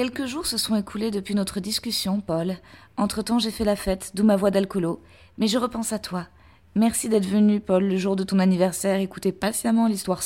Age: 20-39